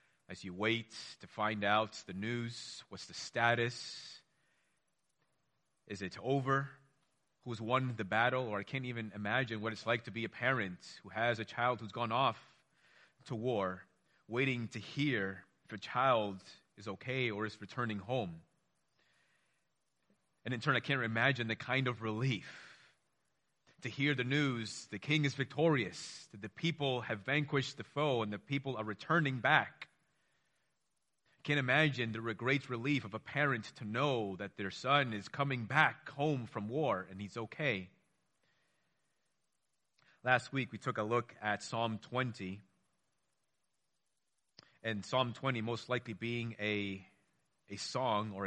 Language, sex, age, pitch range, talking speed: English, male, 30-49, 105-130 Hz, 150 wpm